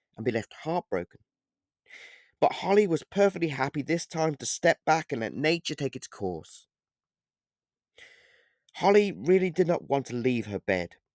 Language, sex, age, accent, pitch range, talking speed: English, male, 30-49, British, 125-175 Hz, 155 wpm